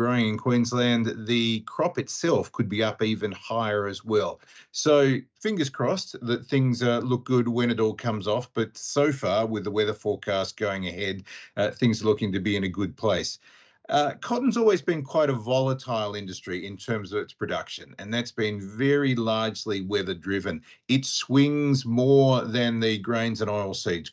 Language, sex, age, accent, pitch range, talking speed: English, male, 50-69, Australian, 100-125 Hz, 180 wpm